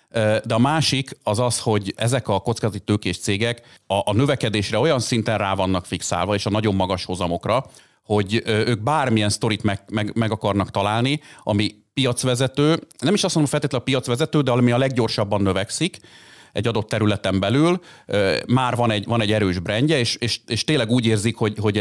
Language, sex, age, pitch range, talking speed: Hungarian, male, 40-59, 100-125 Hz, 175 wpm